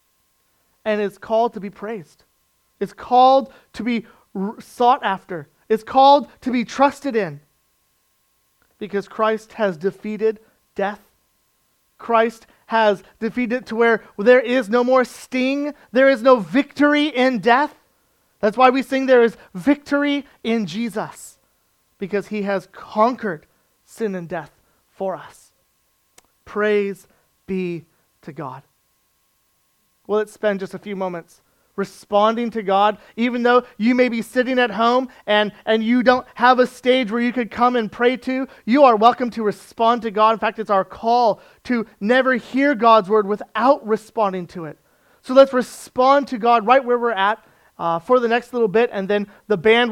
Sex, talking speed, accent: male, 160 wpm, American